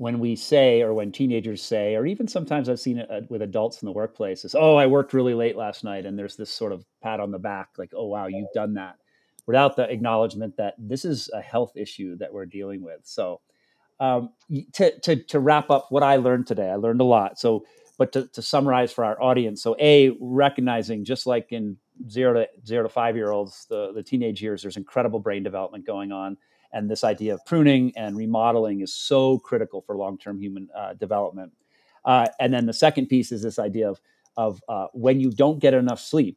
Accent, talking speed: American, 215 wpm